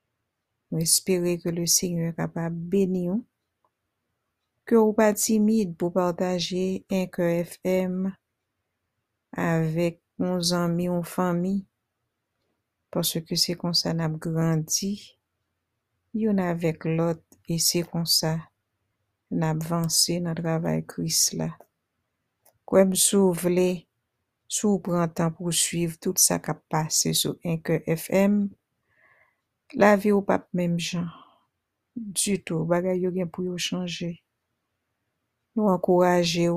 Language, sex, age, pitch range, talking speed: English, female, 60-79, 160-185 Hz, 115 wpm